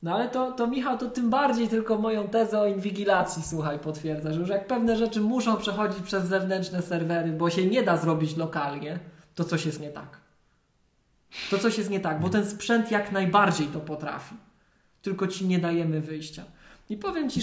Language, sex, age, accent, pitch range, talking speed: Polish, male, 20-39, native, 175-220 Hz, 195 wpm